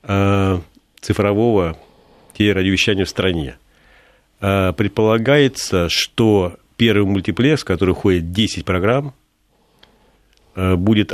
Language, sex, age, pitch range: Russian, male, 40-59, 90-105 Hz